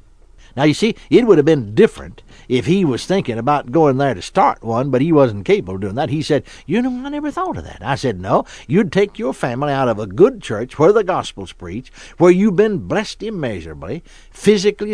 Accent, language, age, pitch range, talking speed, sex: American, English, 60-79, 120-170 Hz, 225 wpm, male